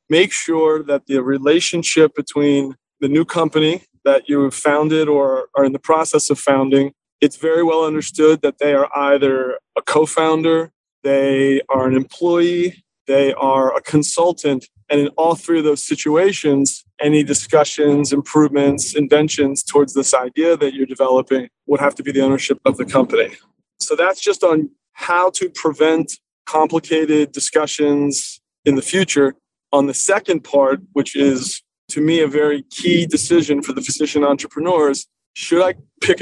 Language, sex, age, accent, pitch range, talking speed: English, male, 30-49, American, 140-160 Hz, 155 wpm